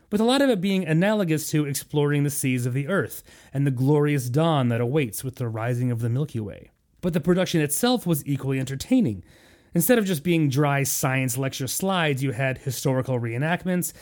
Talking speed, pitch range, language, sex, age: 195 wpm, 130-165 Hz, English, male, 30-49